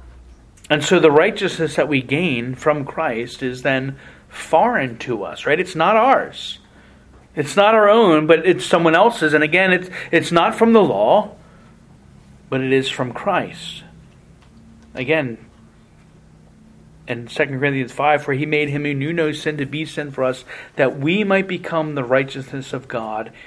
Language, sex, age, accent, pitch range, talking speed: English, male, 40-59, American, 130-165 Hz, 165 wpm